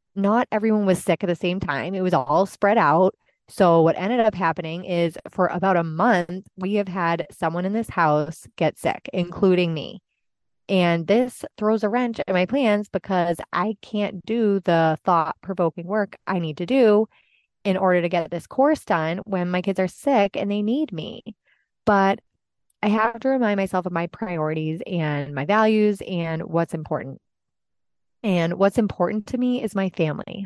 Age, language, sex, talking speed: 20-39, English, female, 180 wpm